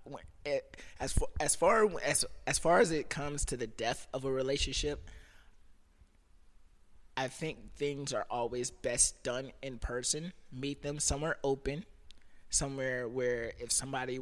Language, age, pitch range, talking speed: English, 20-39, 115-145 Hz, 140 wpm